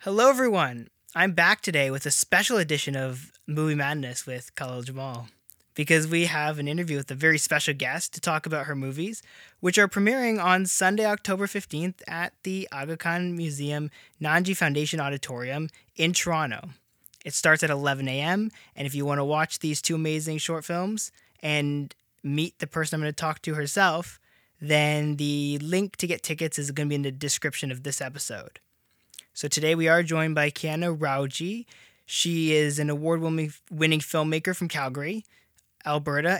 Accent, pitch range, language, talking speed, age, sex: American, 145-175 Hz, English, 170 wpm, 20-39, male